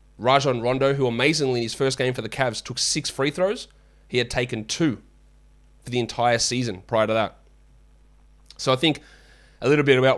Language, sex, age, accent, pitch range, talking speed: English, male, 20-39, Australian, 115-140 Hz, 195 wpm